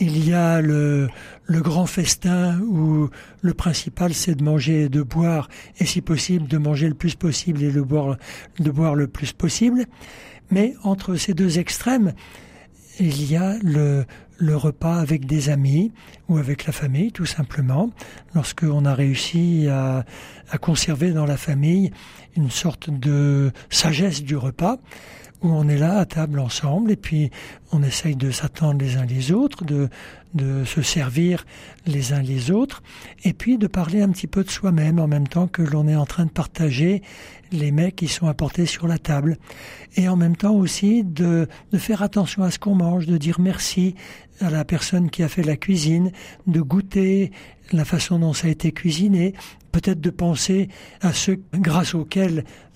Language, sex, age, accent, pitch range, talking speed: French, male, 60-79, French, 150-180 Hz, 180 wpm